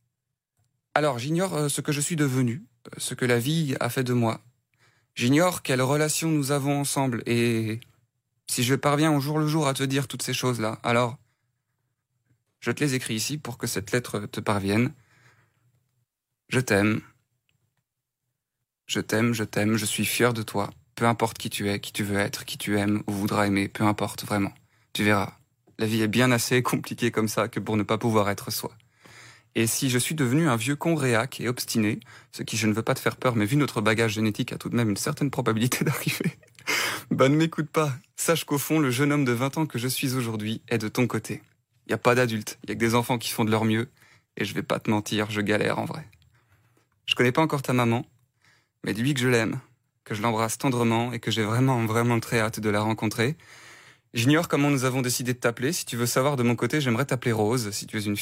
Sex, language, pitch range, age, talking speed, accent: male, French, 110-135 Hz, 20-39, 225 wpm, French